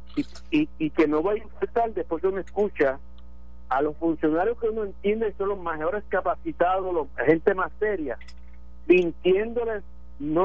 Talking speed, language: 160 wpm, Spanish